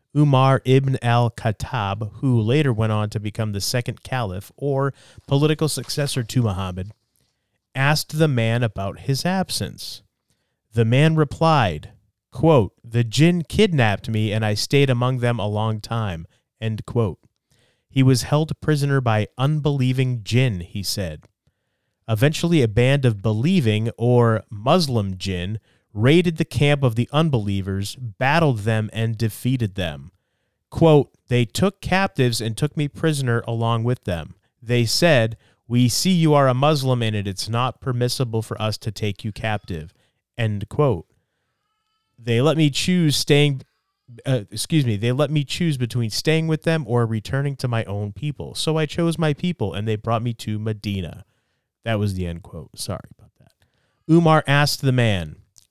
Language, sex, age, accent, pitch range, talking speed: English, male, 30-49, American, 110-140 Hz, 155 wpm